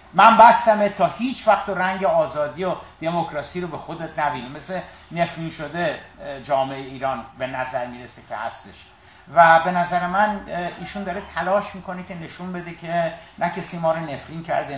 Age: 50-69